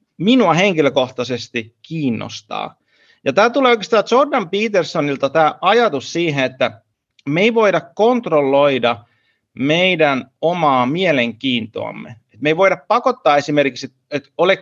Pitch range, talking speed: 130-190 Hz, 110 wpm